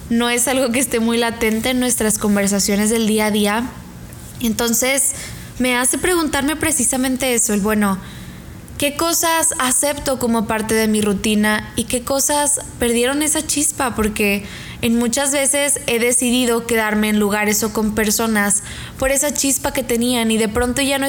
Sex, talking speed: female, 165 wpm